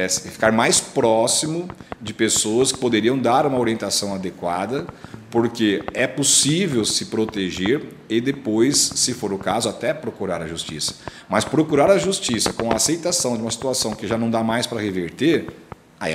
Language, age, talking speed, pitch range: Portuguese, 50-69, 165 wpm, 95-140 Hz